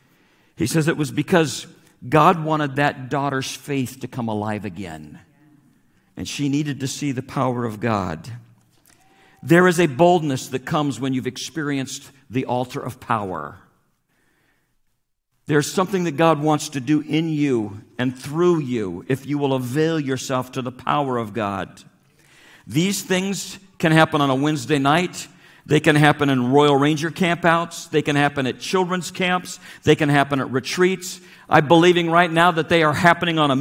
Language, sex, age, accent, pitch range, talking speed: English, male, 50-69, American, 140-180 Hz, 170 wpm